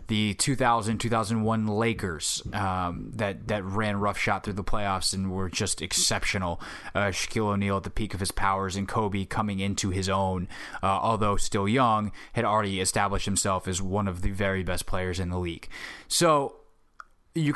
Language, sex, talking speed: English, male, 175 wpm